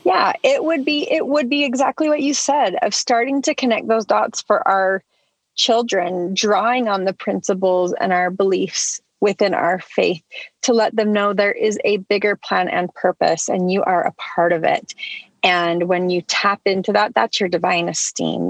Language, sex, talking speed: English, female, 190 wpm